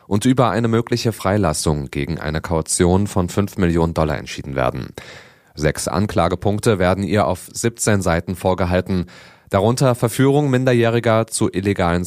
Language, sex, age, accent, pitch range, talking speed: German, male, 30-49, German, 90-110 Hz, 135 wpm